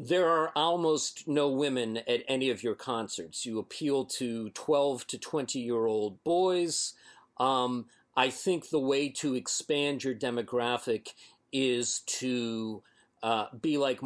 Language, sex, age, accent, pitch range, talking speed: English, male, 40-59, American, 120-155 Hz, 140 wpm